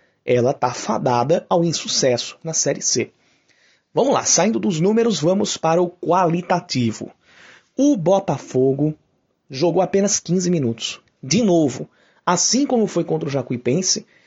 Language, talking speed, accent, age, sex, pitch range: Portuguese, 130 wpm, Brazilian, 30-49, male, 130-175 Hz